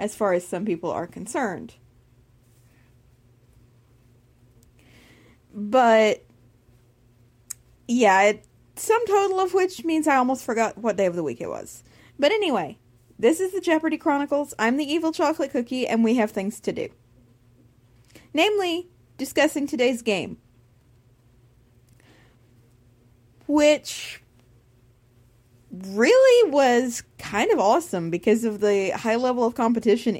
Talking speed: 115 wpm